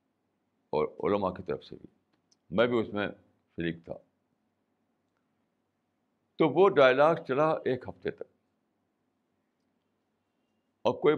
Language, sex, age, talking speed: Urdu, male, 60-79, 115 wpm